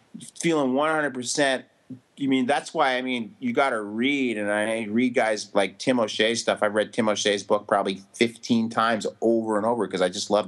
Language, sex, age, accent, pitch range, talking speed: English, male, 30-49, American, 110-170 Hz, 220 wpm